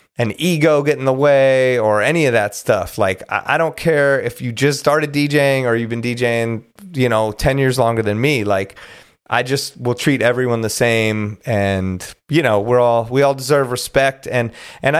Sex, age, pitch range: male, 30-49, 120-150 Hz